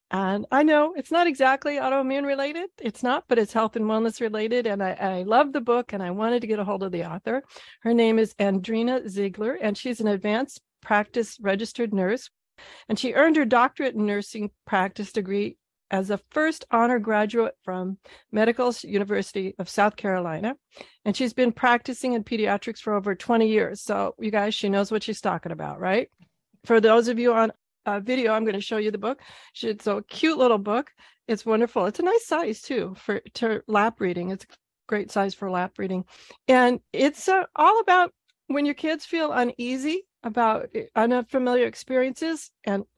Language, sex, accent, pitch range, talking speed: English, female, American, 200-250 Hz, 185 wpm